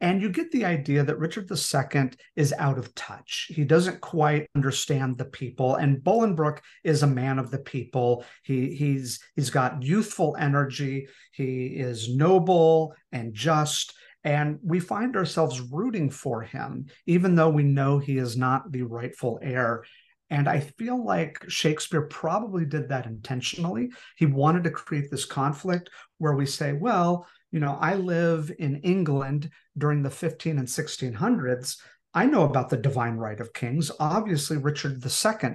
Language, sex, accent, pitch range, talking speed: English, male, American, 130-170 Hz, 160 wpm